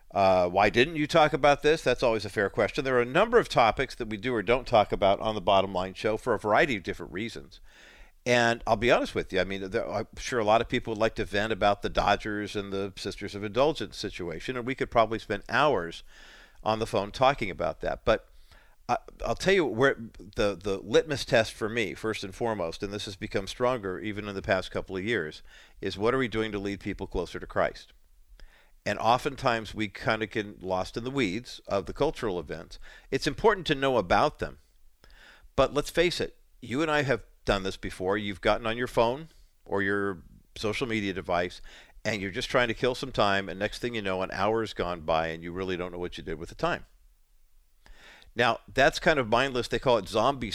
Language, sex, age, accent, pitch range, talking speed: English, male, 50-69, American, 95-120 Hz, 225 wpm